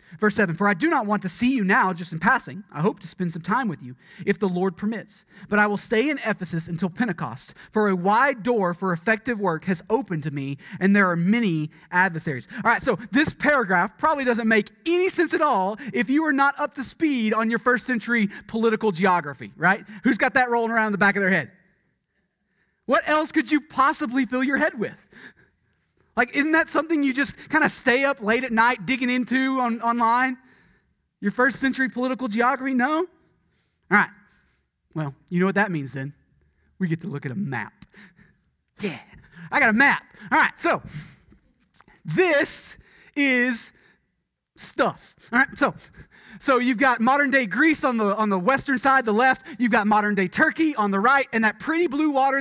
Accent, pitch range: American, 195-265 Hz